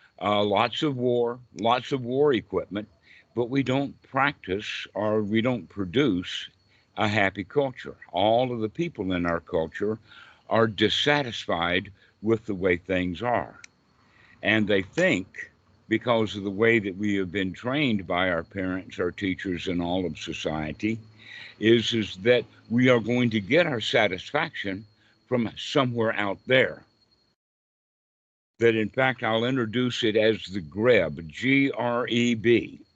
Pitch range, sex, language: 100-130 Hz, male, English